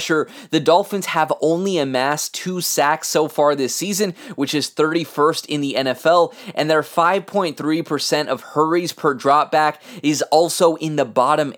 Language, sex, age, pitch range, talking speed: English, male, 20-39, 145-165 Hz, 150 wpm